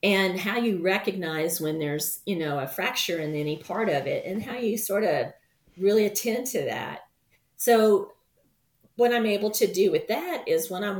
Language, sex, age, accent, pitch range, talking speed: English, female, 40-59, American, 160-205 Hz, 190 wpm